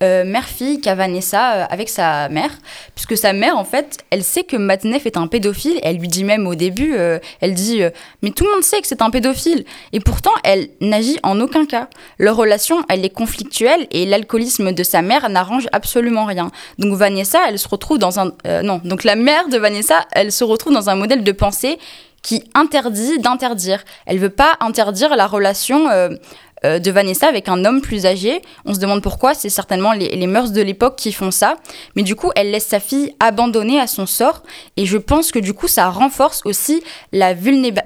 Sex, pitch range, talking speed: female, 195-275 Hz, 215 wpm